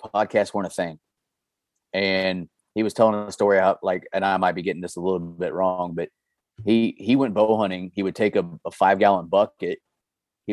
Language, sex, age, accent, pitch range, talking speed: English, male, 30-49, American, 95-110 Hz, 210 wpm